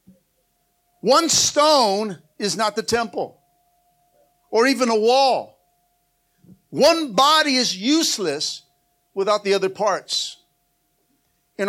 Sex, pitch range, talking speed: male, 160-240 Hz, 100 wpm